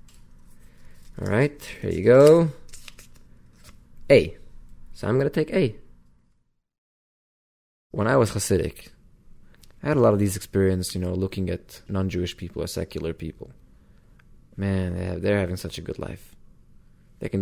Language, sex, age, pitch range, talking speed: English, male, 20-39, 90-115 Hz, 140 wpm